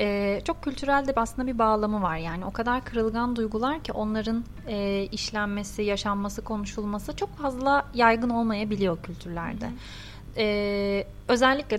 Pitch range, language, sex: 205-250 Hz, Turkish, female